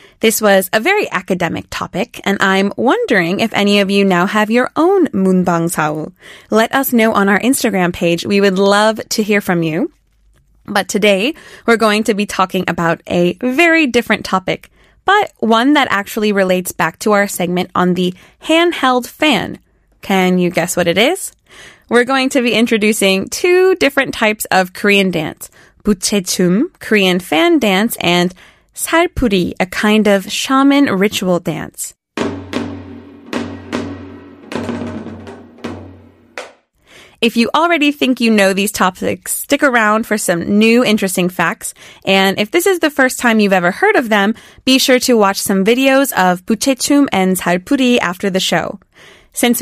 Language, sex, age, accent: Korean, female, 20-39, American